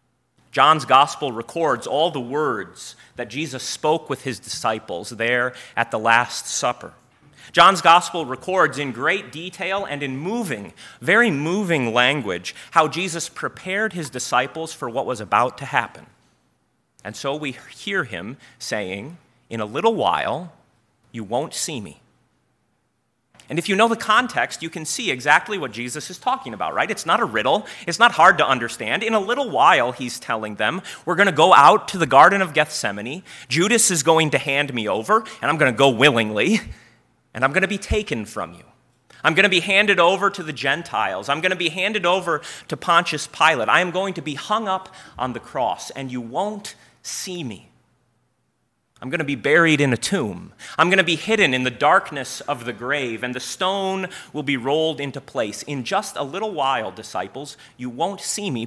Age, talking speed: 30-49, 190 wpm